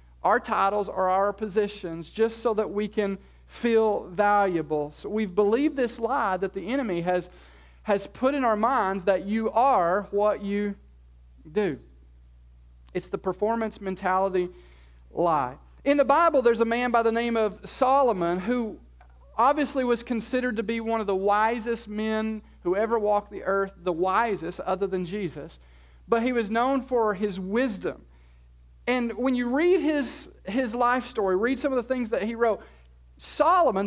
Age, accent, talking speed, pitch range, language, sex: 40-59, American, 165 wpm, 190-240 Hz, English, male